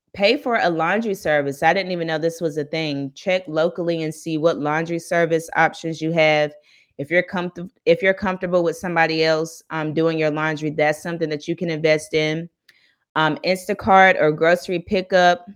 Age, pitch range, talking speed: 20-39, 155-175 Hz, 185 wpm